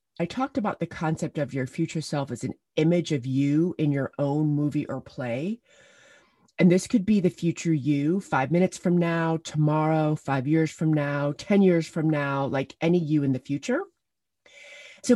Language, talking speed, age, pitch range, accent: English, 185 wpm, 30-49, 145-195 Hz, American